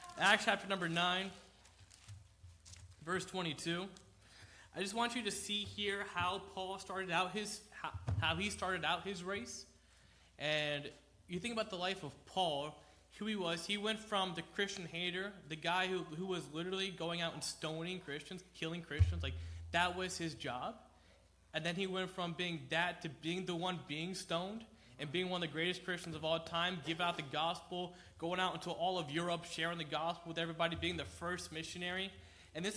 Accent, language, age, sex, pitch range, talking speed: American, English, 20-39, male, 165-200 Hz, 190 wpm